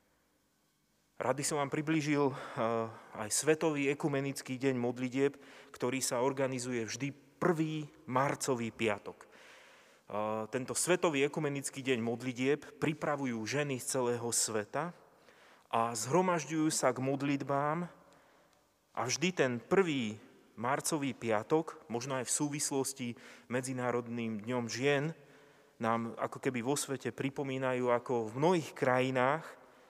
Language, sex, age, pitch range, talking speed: Slovak, male, 30-49, 120-145 Hz, 110 wpm